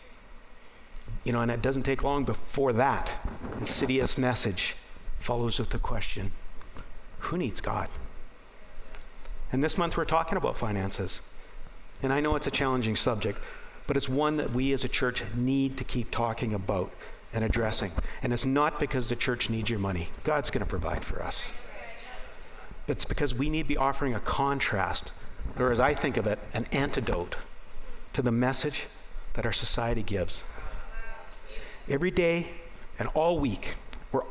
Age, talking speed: 50-69, 160 wpm